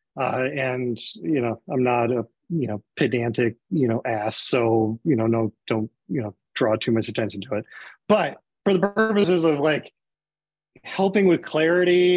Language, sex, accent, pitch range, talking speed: English, male, American, 135-175 Hz, 175 wpm